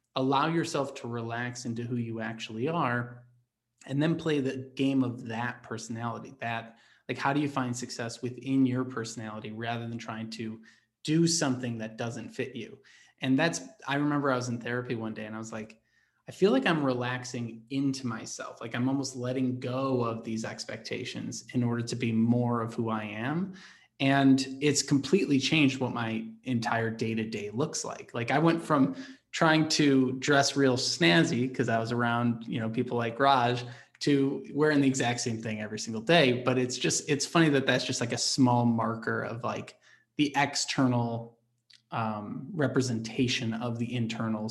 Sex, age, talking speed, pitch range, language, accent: male, 20-39, 180 wpm, 115-140 Hz, English, American